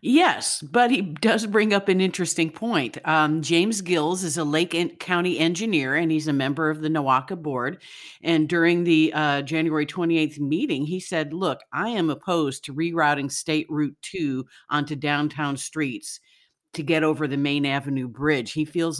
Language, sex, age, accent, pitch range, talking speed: English, female, 50-69, American, 145-175 Hz, 175 wpm